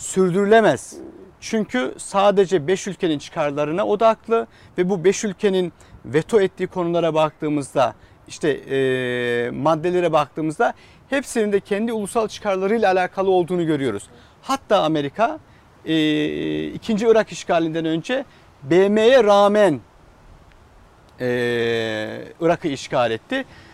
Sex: male